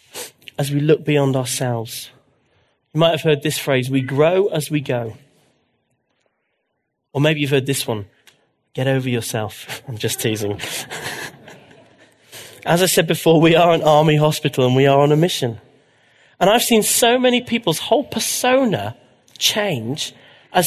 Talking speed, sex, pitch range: 155 wpm, male, 130-170 Hz